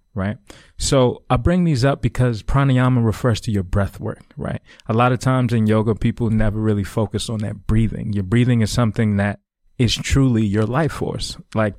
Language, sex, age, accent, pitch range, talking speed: English, male, 20-39, American, 105-120 Hz, 195 wpm